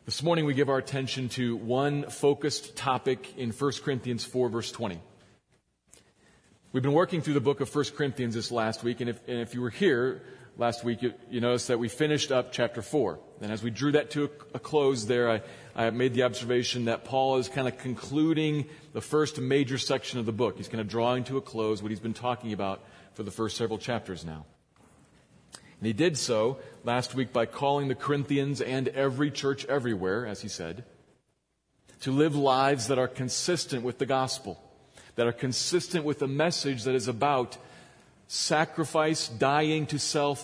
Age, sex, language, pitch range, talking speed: 40-59, male, English, 115-145 Hz, 195 wpm